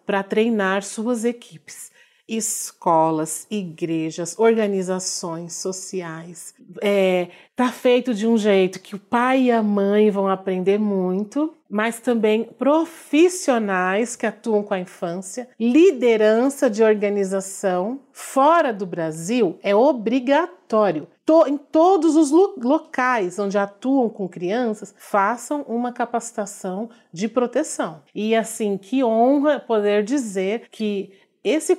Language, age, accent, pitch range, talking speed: Portuguese, 40-59, Brazilian, 205-265 Hz, 110 wpm